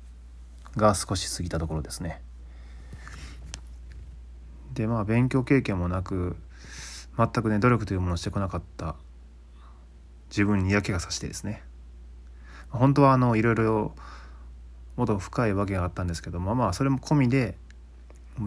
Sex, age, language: male, 20-39, Japanese